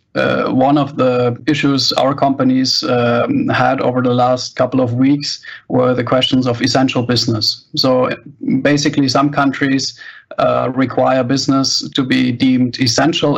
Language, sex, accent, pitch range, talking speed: English, male, German, 125-145 Hz, 145 wpm